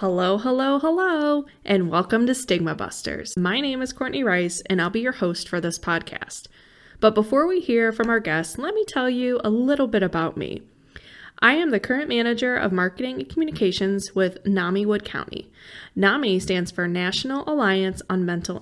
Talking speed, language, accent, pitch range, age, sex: 185 wpm, English, American, 190-255 Hz, 20-39, female